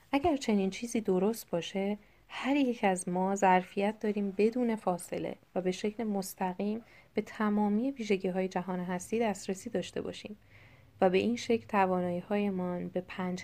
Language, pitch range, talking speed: Persian, 175-220 Hz, 145 wpm